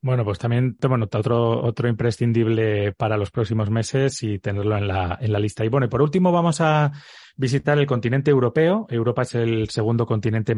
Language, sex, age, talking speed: Spanish, male, 30-49, 200 wpm